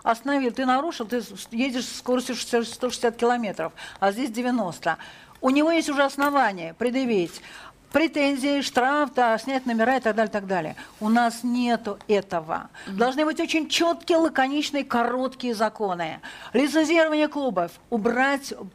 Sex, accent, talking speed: female, native, 140 wpm